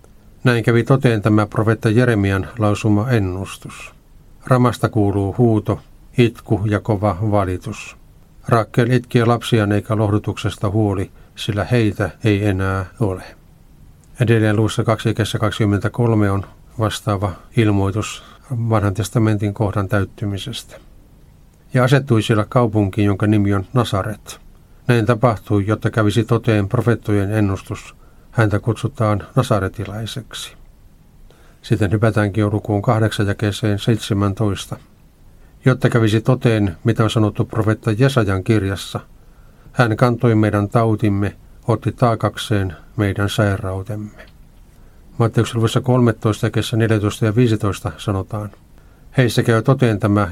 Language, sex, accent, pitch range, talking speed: Finnish, male, native, 105-115 Hz, 105 wpm